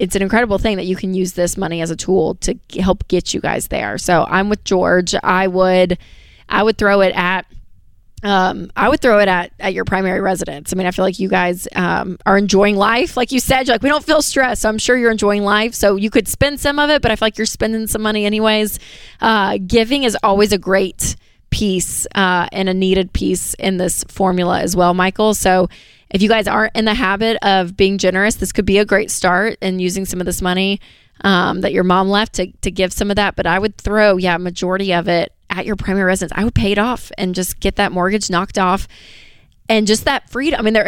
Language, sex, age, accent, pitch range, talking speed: English, female, 20-39, American, 180-215 Hz, 240 wpm